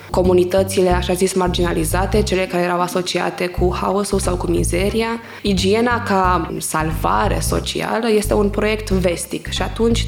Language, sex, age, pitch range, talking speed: Romanian, female, 20-39, 170-195 Hz, 135 wpm